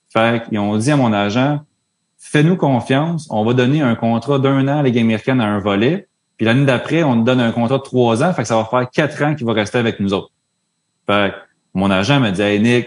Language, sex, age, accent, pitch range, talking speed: French, male, 30-49, Canadian, 105-130 Hz, 245 wpm